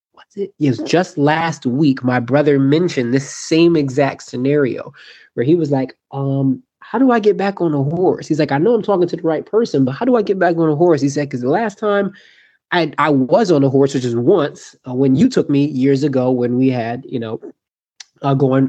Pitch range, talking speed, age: 125-150 Hz, 230 wpm, 20-39